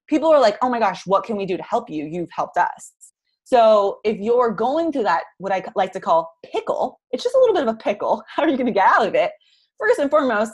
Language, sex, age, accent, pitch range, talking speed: English, female, 20-39, American, 190-285 Hz, 275 wpm